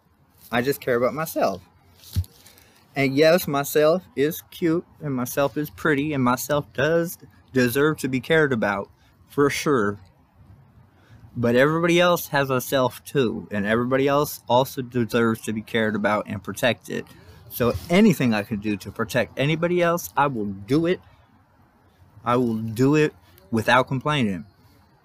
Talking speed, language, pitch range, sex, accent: 145 wpm, English, 105-150 Hz, male, American